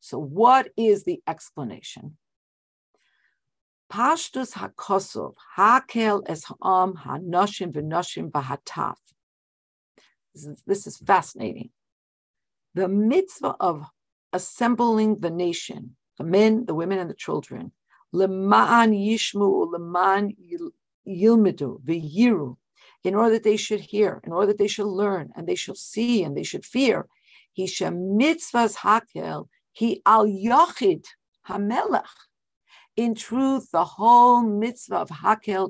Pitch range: 175-225 Hz